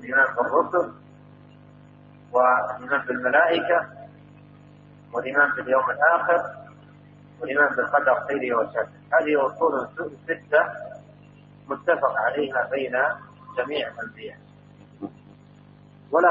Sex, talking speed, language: male, 75 wpm, Arabic